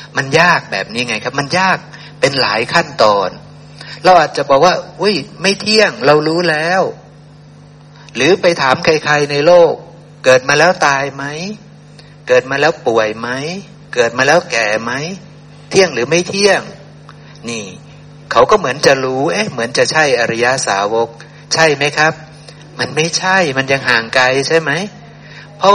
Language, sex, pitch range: Thai, male, 130-170 Hz